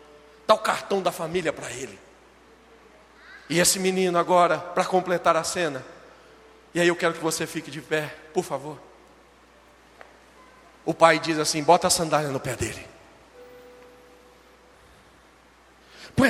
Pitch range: 150-185 Hz